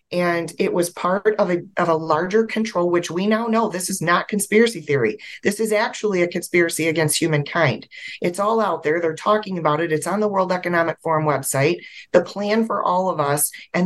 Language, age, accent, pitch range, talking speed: English, 30-49, American, 165-210 Hz, 205 wpm